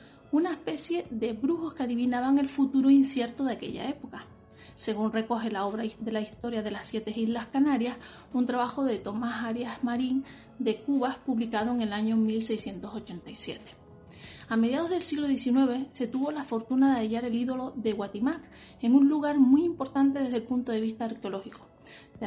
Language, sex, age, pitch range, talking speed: Spanish, female, 30-49, 225-275 Hz, 175 wpm